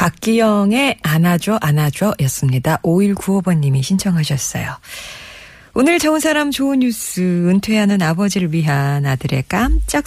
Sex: female